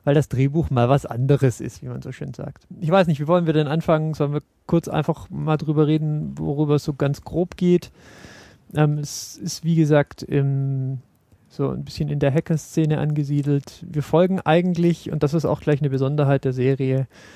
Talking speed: 195 wpm